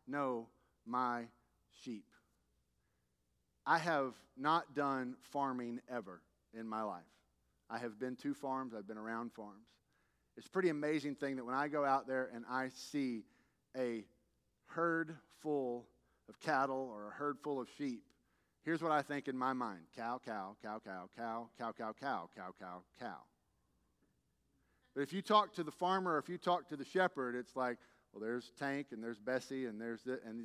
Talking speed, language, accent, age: 175 wpm, English, American, 40-59